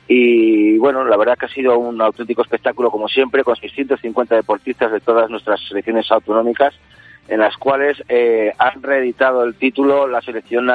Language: Spanish